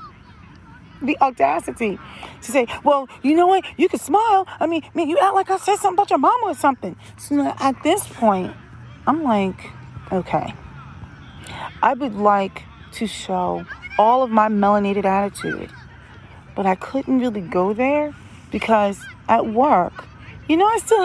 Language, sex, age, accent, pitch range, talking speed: English, female, 40-59, American, 180-290 Hz, 155 wpm